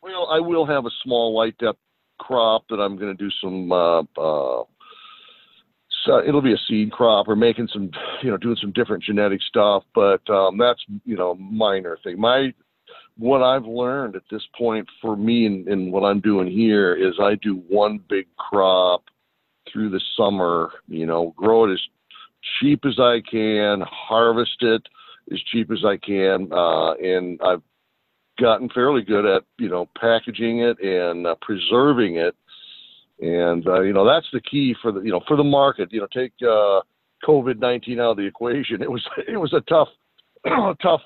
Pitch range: 95-125 Hz